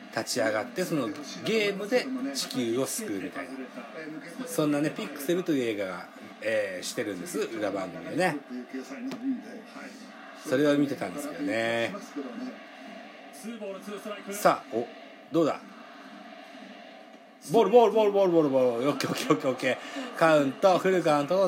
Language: Japanese